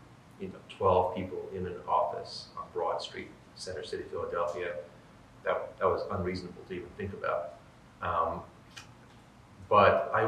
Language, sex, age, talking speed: English, male, 30-49, 140 wpm